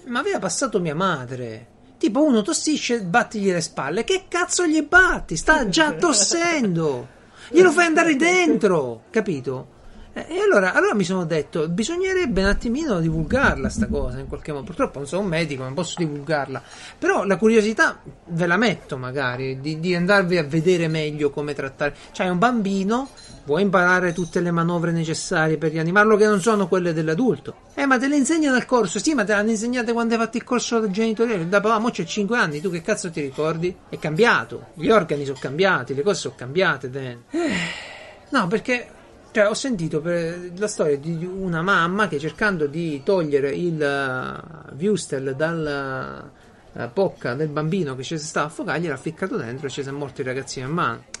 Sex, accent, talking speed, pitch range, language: male, native, 180 wpm, 155-230 Hz, Italian